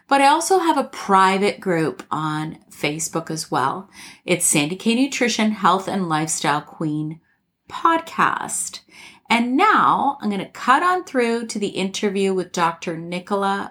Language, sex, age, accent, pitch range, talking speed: English, female, 30-49, American, 180-250 Hz, 150 wpm